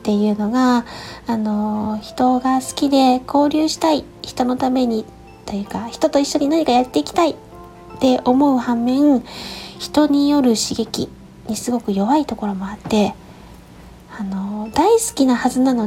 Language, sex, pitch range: Japanese, female, 210-270 Hz